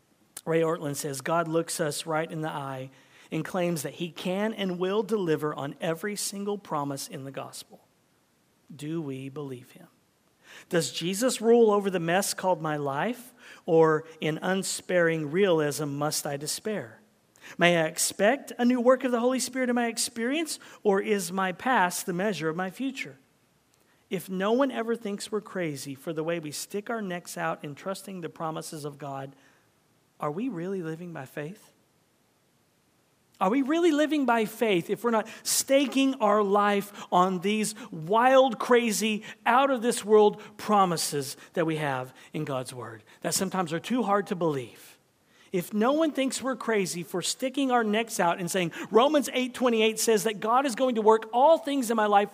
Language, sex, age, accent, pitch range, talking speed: English, male, 50-69, American, 160-235 Hz, 175 wpm